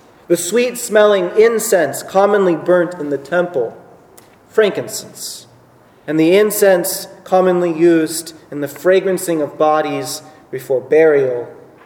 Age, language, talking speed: 30-49, English, 105 wpm